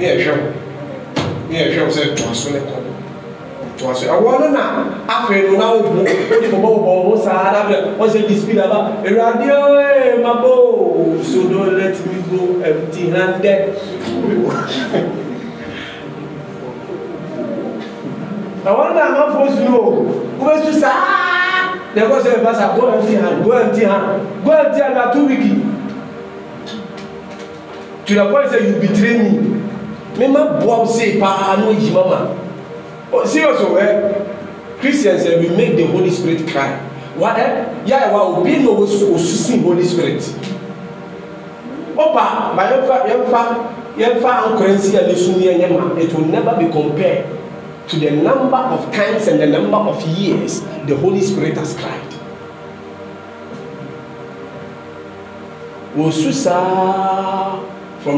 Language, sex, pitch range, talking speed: English, male, 185-235 Hz, 60 wpm